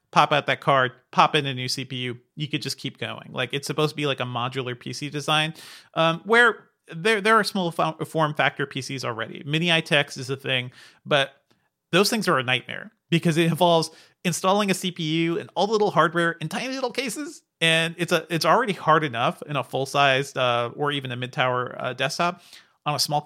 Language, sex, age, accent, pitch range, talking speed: English, male, 30-49, American, 135-170 Hz, 205 wpm